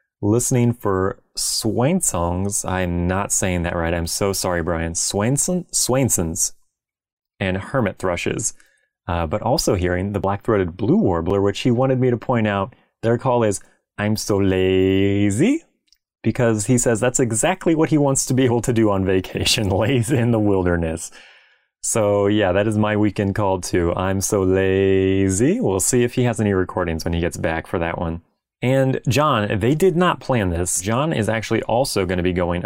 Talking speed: 180 wpm